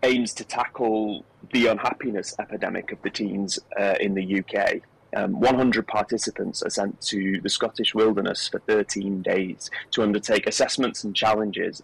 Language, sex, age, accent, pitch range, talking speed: English, male, 30-49, British, 100-125 Hz, 150 wpm